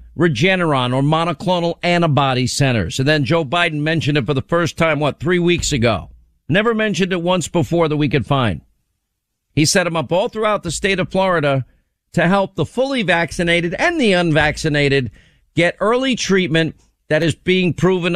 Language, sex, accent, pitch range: English, male, American, 135-180 Hz